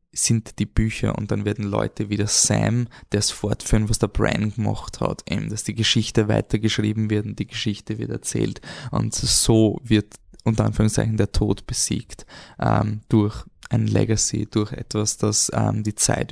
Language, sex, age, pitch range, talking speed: German, male, 20-39, 110-120 Hz, 165 wpm